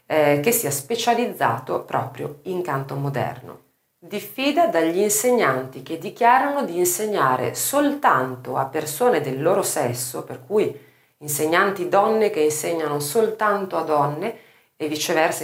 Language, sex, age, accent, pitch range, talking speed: Italian, female, 40-59, native, 145-215 Hz, 120 wpm